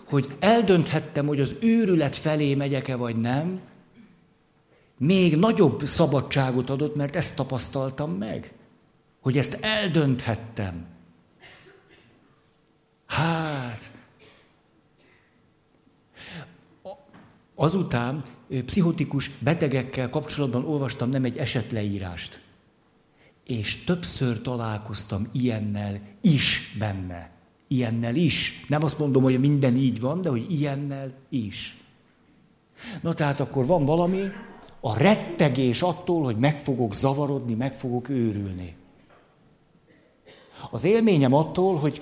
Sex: male